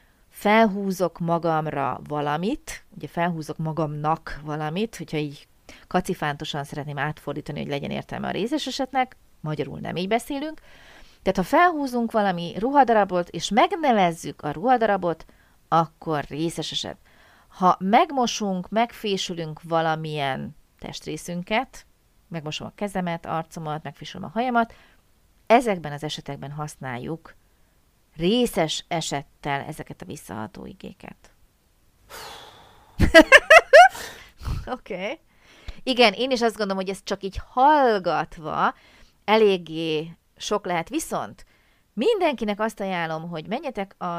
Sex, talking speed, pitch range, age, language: female, 105 wpm, 160-220 Hz, 30-49, Hungarian